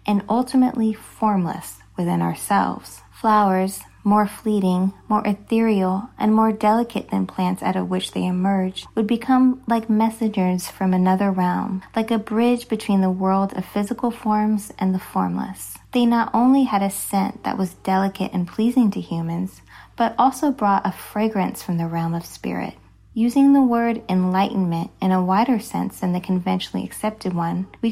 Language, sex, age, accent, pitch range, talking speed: English, female, 20-39, American, 185-225 Hz, 165 wpm